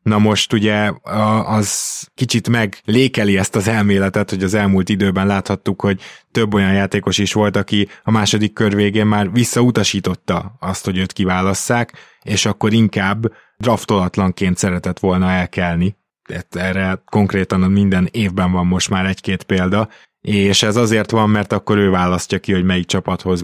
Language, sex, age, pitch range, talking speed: Hungarian, male, 20-39, 95-110 Hz, 150 wpm